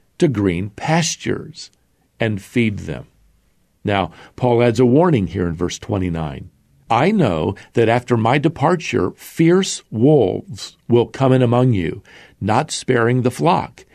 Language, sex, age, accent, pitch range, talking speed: English, male, 50-69, American, 100-145 Hz, 140 wpm